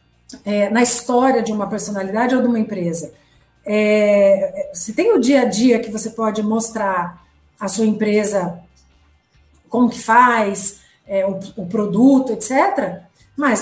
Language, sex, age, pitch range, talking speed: Portuguese, female, 40-59, 210-280 Hz, 145 wpm